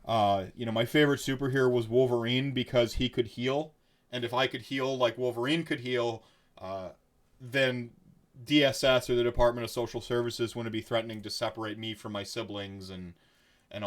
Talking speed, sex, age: 175 wpm, male, 30-49